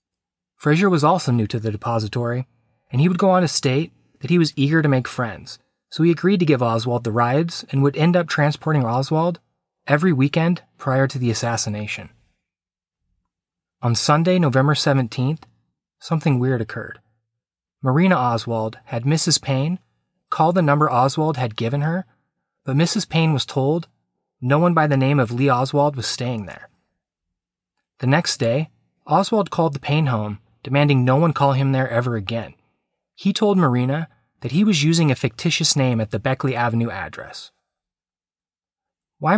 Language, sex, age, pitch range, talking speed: English, male, 30-49, 120-160 Hz, 165 wpm